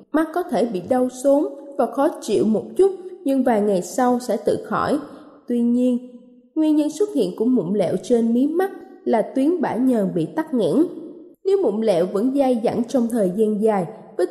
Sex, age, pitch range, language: female, 20-39, 220-305 Hz, Thai